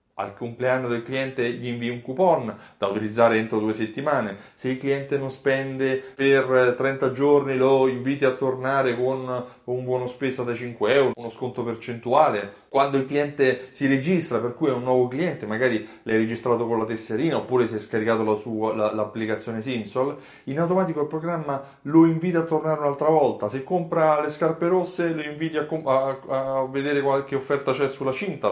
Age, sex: 30-49, male